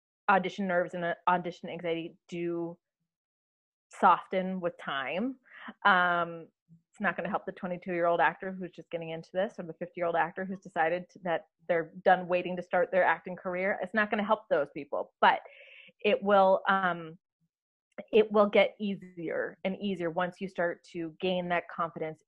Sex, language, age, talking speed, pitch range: female, English, 30-49, 180 wpm, 170-210 Hz